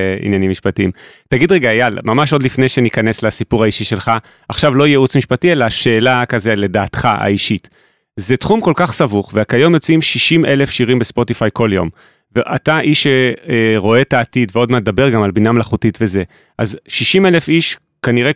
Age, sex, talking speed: 30-49, male, 175 wpm